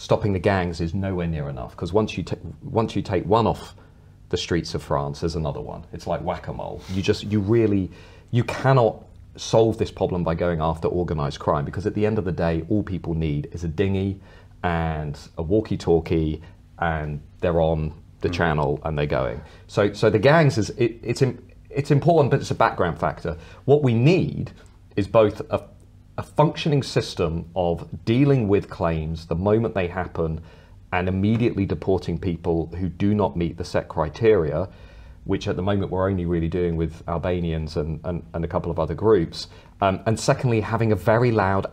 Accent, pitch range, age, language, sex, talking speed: British, 85-110 Hz, 40-59, English, male, 190 wpm